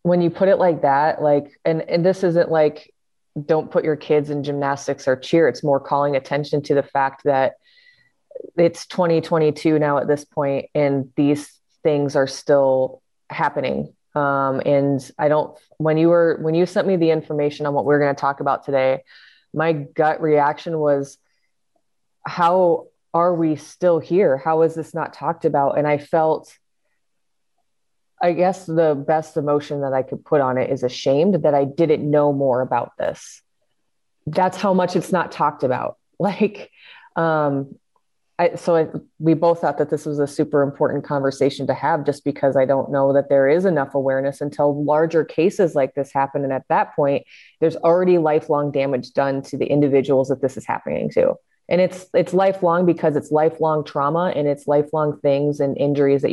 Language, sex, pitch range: English, female, 140-165 Hz